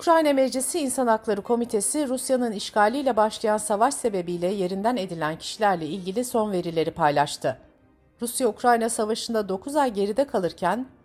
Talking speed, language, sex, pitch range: 125 wpm, Turkish, female, 185-260 Hz